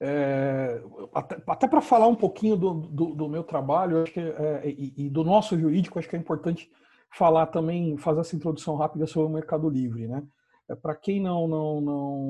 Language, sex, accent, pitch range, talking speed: Portuguese, male, Brazilian, 150-190 Hz, 175 wpm